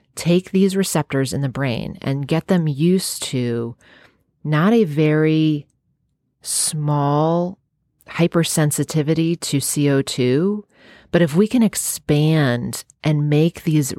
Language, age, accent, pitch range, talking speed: English, 30-49, American, 135-175 Hz, 110 wpm